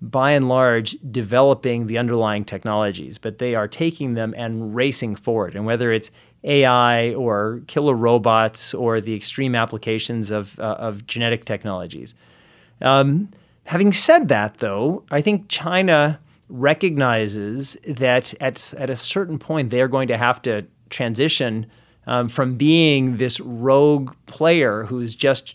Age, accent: 30-49, American